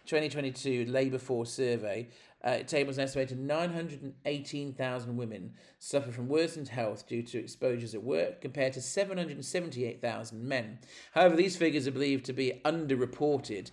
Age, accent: 40-59, British